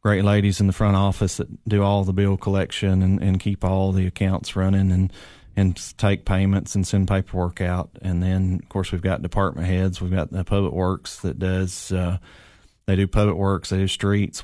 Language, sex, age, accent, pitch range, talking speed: English, male, 30-49, American, 90-100 Hz, 210 wpm